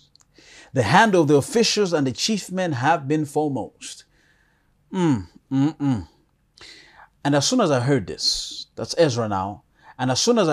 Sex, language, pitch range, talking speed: male, English, 125-175 Hz, 165 wpm